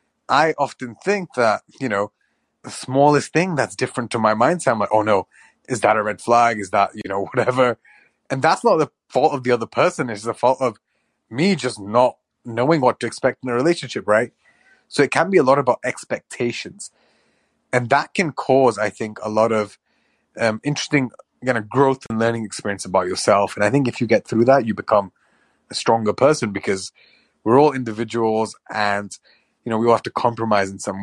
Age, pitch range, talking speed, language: 30-49, 105-130 Hz, 205 wpm, English